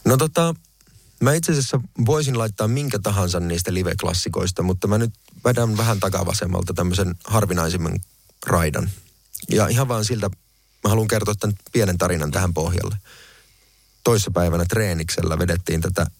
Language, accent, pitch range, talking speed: Finnish, native, 90-110 Hz, 135 wpm